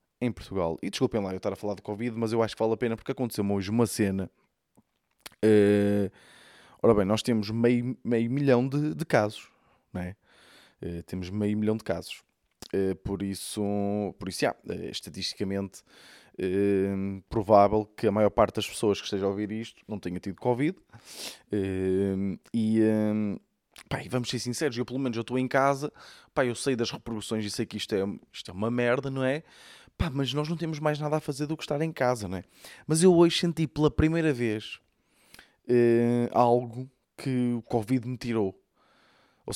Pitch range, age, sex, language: 100-125 Hz, 20-39, male, Portuguese